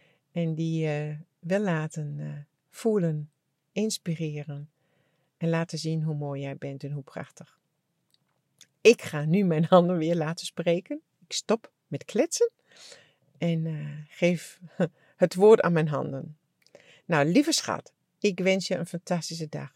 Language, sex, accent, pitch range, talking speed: English, female, Dutch, 150-180 Hz, 145 wpm